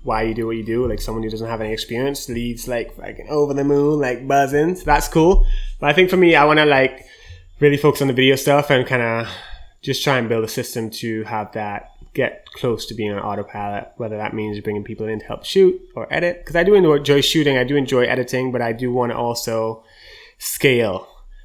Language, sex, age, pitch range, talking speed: English, male, 20-39, 110-135 Hz, 230 wpm